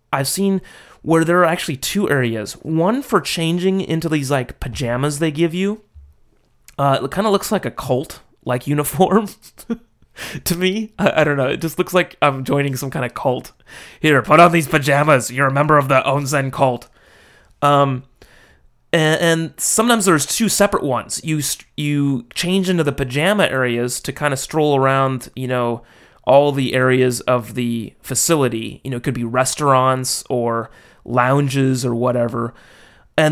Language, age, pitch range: English, 30-49, 125-160 Hz